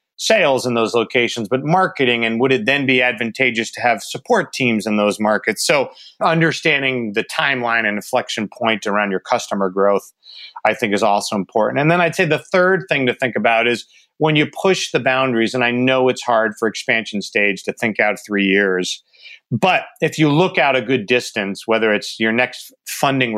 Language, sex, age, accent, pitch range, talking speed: English, male, 40-59, American, 110-140 Hz, 200 wpm